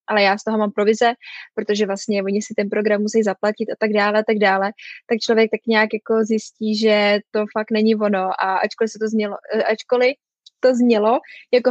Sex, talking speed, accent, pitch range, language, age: female, 205 wpm, native, 200-220 Hz, Czech, 20-39